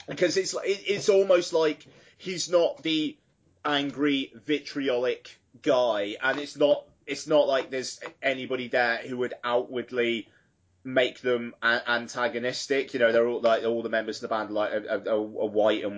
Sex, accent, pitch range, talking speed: male, British, 110-140 Hz, 175 wpm